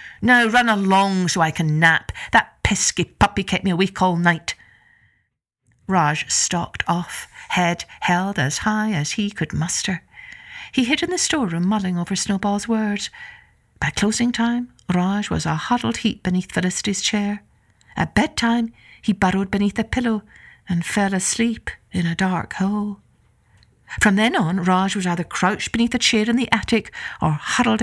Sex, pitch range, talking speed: female, 185-235 Hz, 160 wpm